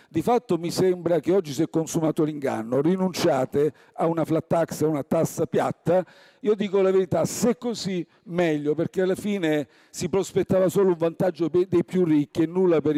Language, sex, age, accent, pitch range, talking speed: Italian, male, 50-69, native, 150-195 Hz, 185 wpm